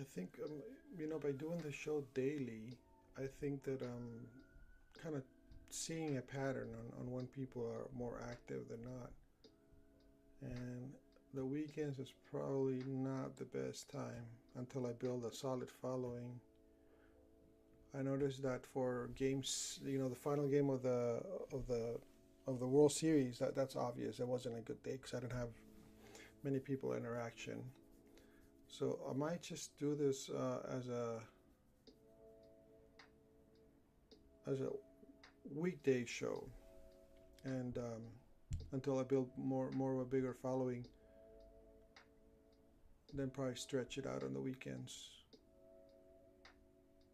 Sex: male